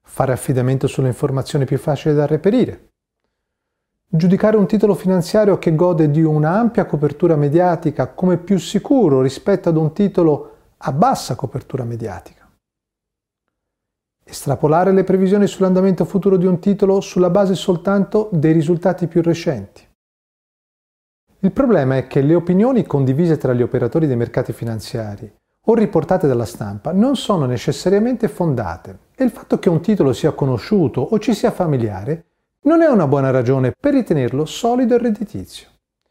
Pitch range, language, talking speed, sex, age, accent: 140-205 Hz, Italian, 145 wpm, male, 30-49, native